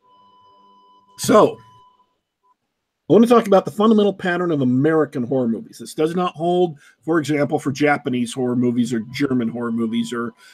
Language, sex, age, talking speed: English, male, 40-59, 160 wpm